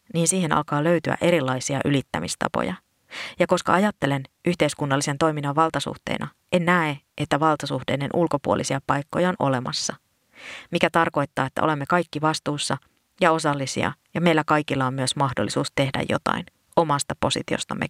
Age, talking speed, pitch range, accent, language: 30-49, 125 wpm, 135-165 Hz, native, Finnish